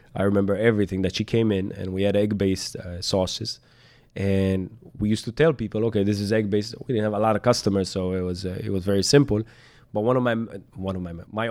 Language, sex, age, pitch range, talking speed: English, male, 20-39, 95-120 Hz, 250 wpm